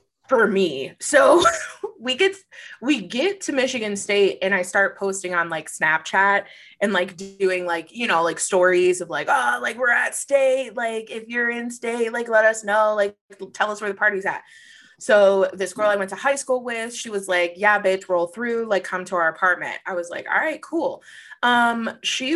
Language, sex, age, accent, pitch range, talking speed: English, female, 20-39, American, 185-240 Hz, 205 wpm